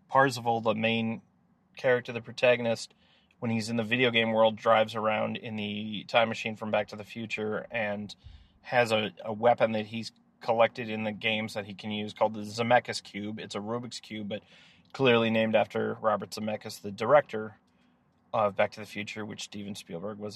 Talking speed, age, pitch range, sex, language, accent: 190 wpm, 30-49, 105-120 Hz, male, English, American